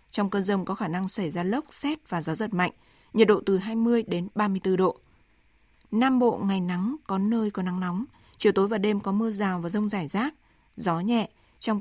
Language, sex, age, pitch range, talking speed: Vietnamese, female, 20-39, 190-225 Hz, 225 wpm